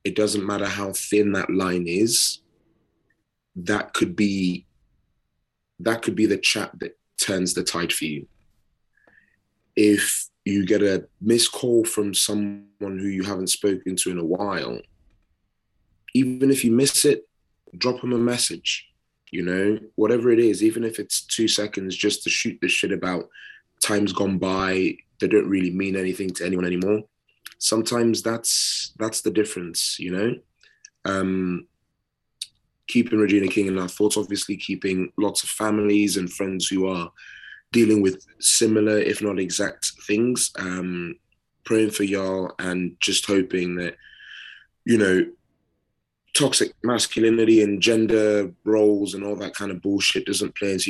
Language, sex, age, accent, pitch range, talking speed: English, male, 20-39, British, 95-110 Hz, 150 wpm